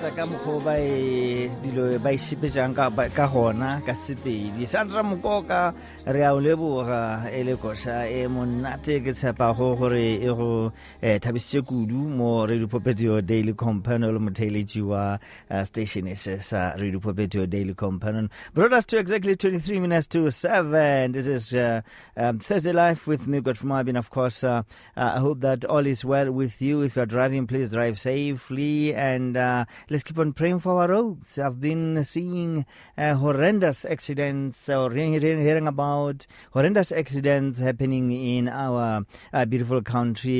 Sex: male